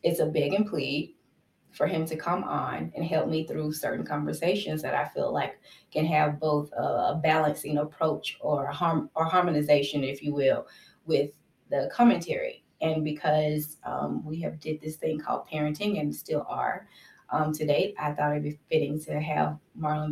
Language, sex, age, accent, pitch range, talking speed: English, female, 20-39, American, 150-175 Hz, 180 wpm